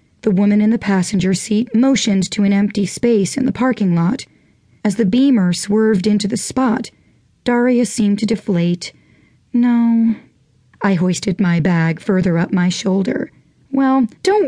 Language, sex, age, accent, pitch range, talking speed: English, female, 40-59, American, 185-235 Hz, 155 wpm